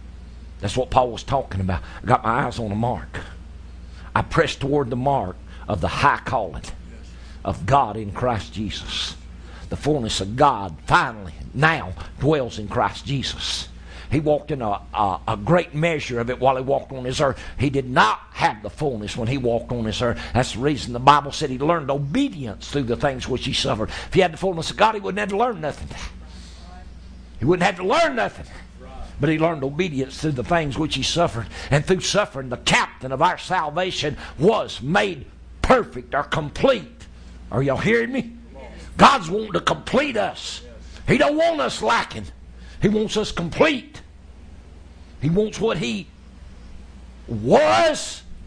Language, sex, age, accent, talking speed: English, male, 60-79, American, 180 wpm